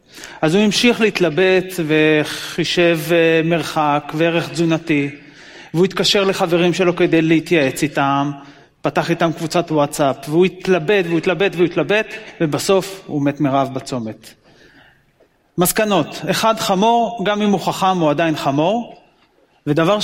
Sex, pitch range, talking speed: male, 155-190 Hz, 125 wpm